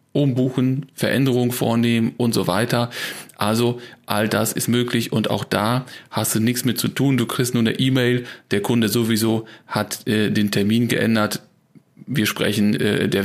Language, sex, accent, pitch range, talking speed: German, male, German, 110-125 Hz, 170 wpm